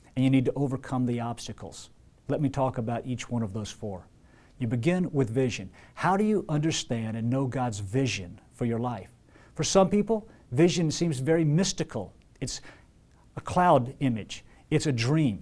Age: 50-69